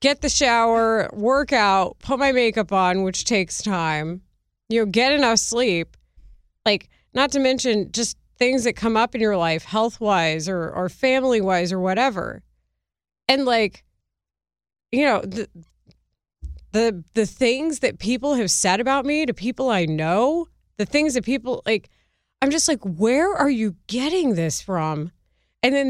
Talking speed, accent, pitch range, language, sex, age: 160 wpm, American, 175-250 Hz, English, female, 30-49